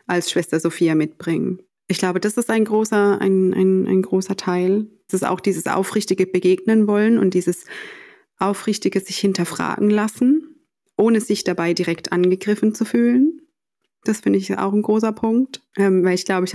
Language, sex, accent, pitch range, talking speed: German, female, German, 180-210 Hz, 155 wpm